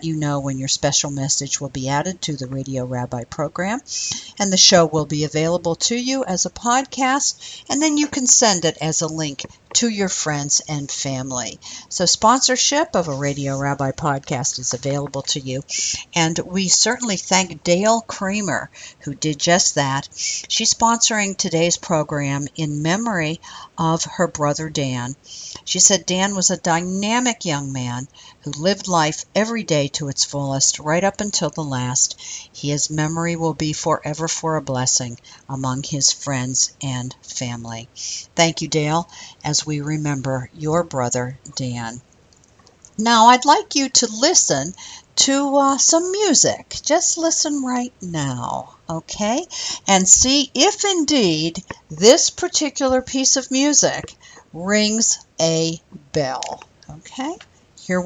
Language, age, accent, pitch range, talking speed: English, 60-79, American, 140-215 Hz, 145 wpm